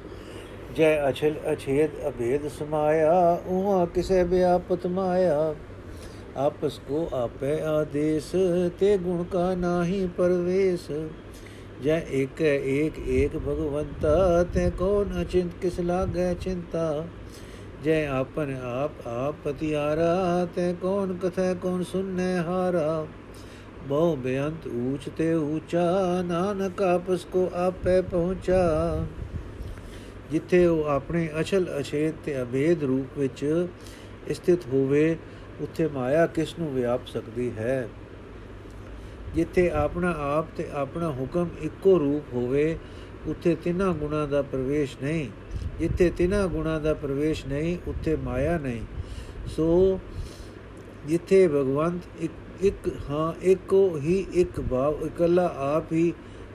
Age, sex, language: 50-69, male, Punjabi